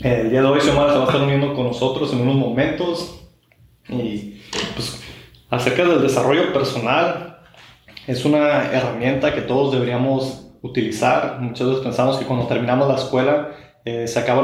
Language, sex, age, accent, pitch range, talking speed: Spanish, male, 20-39, Mexican, 120-140 Hz, 160 wpm